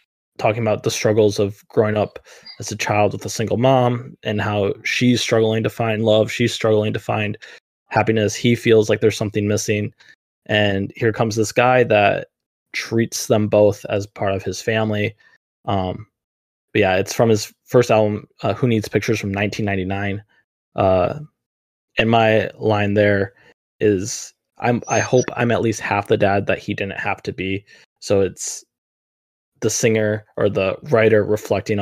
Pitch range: 105-115 Hz